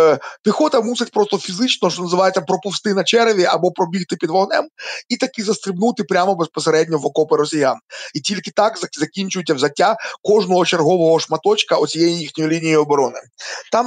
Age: 30-49